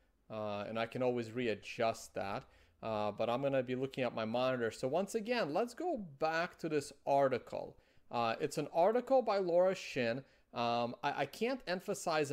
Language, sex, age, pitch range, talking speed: English, male, 30-49, 120-170 Hz, 180 wpm